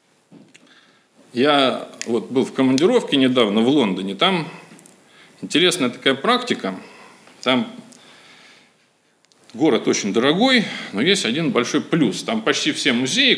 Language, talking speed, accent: Russian, 110 wpm, native